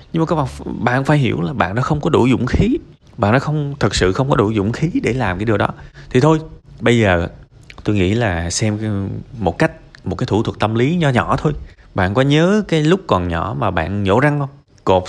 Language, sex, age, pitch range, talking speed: Vietnamese, male, 20-39, 100-135 Hz, 245 wpm